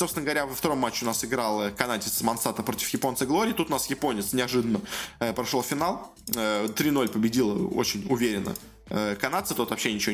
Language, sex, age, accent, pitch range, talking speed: Russian, male, 20-39, native, 115-160 Hz, 165 wpm